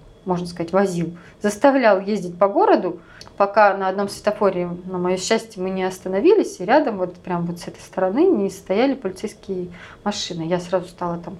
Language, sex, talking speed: Russian, female, 175 wpm